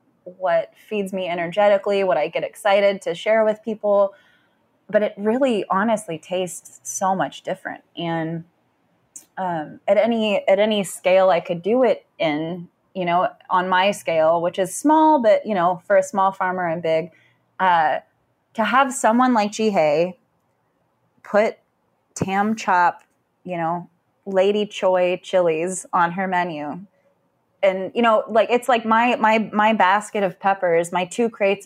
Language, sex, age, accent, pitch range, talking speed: English, female, 20-39, American, 180-225 Hz, 155 wpm